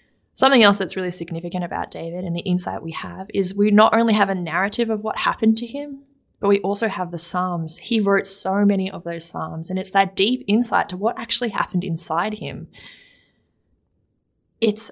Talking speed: 195 wpm